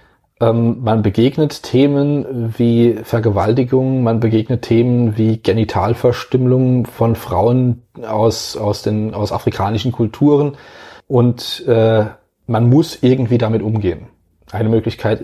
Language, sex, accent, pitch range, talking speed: German, male, German, 105-120 Hz, 110 wpm